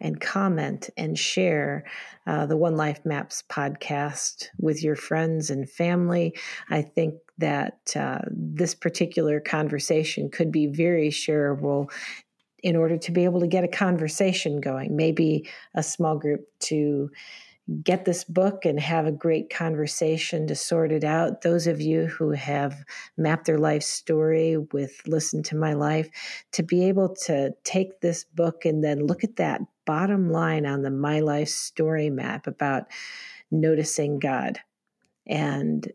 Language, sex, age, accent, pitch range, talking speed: English, female, 50-69, American, 145-165 Hz, 150 wpm